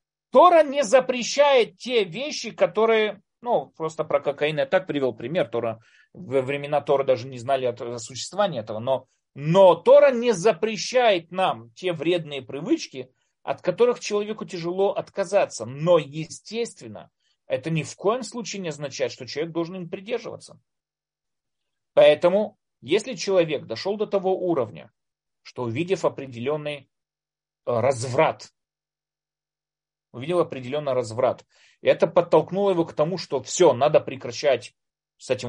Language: Russian